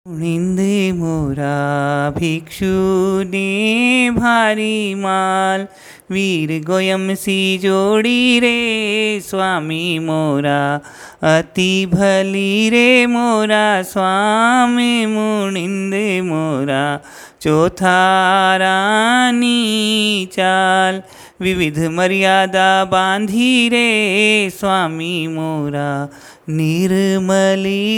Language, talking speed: Hindi, 60 wpm